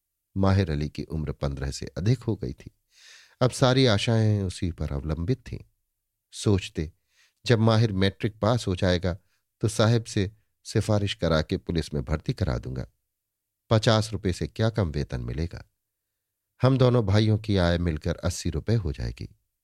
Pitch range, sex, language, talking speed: 90-110 Hz, male, Hindi, 160 wpm